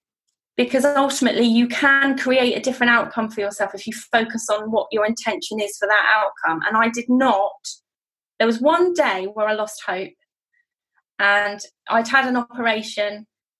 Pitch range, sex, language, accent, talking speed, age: 200-255 Hz, female, English, British, 170 wpm, 20-39